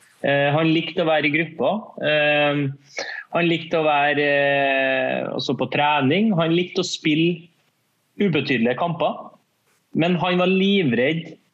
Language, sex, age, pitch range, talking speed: English, male, 30-49, 135-160 Hz, 120 wpm